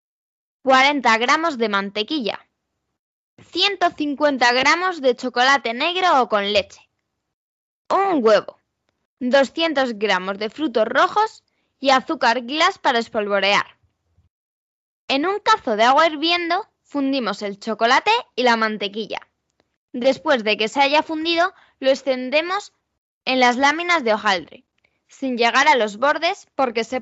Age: 10-29